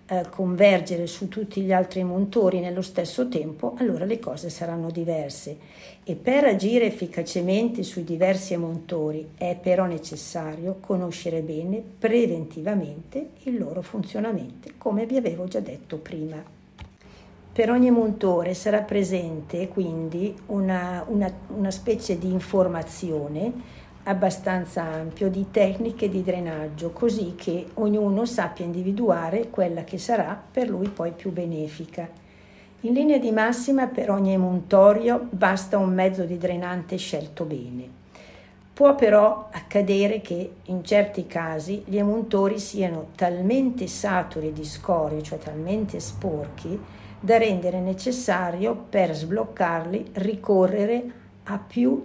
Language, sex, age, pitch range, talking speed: Italian, female, 60-79, 170-210 Hz, 120 wpm